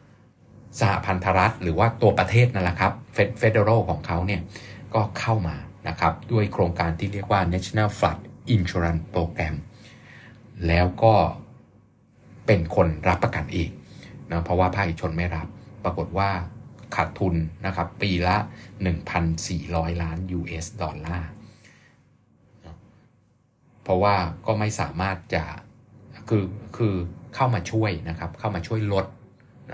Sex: male